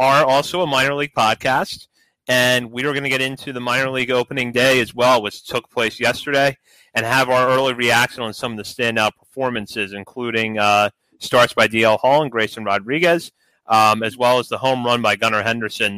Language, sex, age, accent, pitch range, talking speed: English, male, 30-49, American, 110-135 Hz, 205 wpm